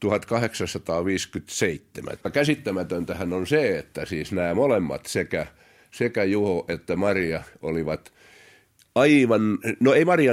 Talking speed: 105 wpm